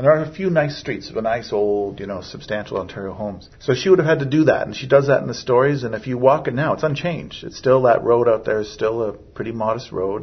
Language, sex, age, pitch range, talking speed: English, male, 50-69, 115-160 Hz, 295 wpm